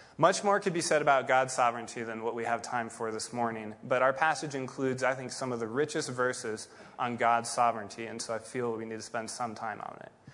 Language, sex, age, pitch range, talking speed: English, male, 20-39, 120-160 Hz, 245 wpm